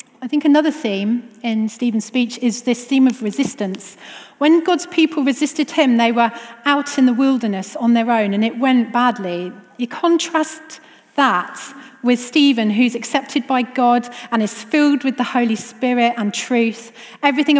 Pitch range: 210-265 Hz